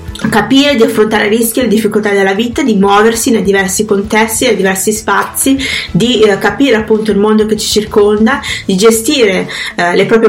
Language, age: Italian, 20-39